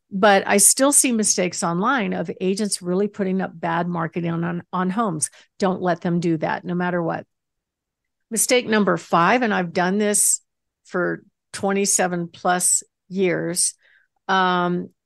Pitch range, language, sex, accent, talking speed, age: 175-215 Hz, English, female, American, 145 wpm, 50-69